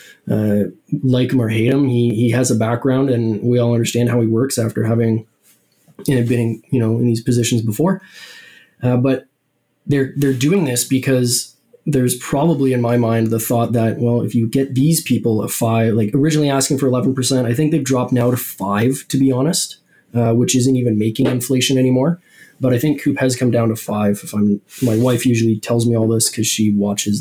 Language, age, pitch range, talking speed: English, 20-39, 115-135 Hz, 205 wpm